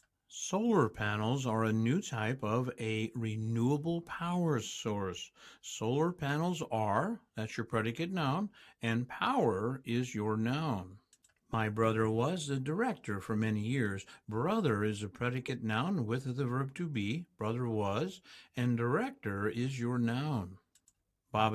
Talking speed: 135 wpm